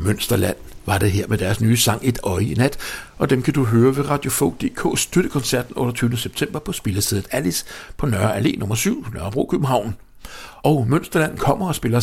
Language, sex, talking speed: English, male, 185 wpm